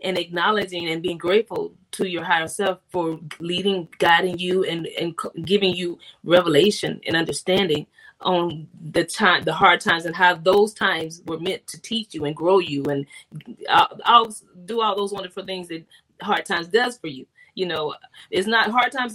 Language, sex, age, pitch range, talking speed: English, female, 20-39, 180-215 Hz, 180 wpm